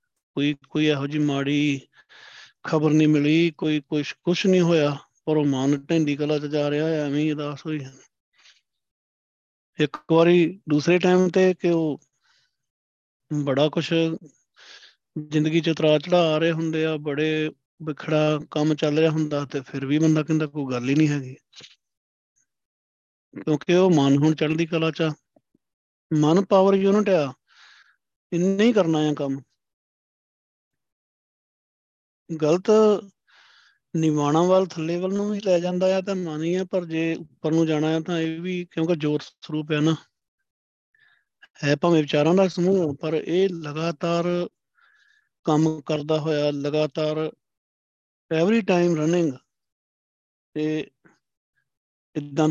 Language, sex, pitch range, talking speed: Punjabi, male, 150-170 Hz, 130 wpm